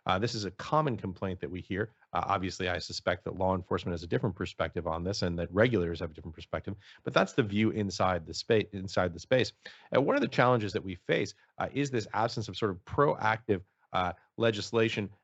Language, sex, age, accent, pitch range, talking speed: English, male, 40-59, American, 95-110 Hz, 230 wpm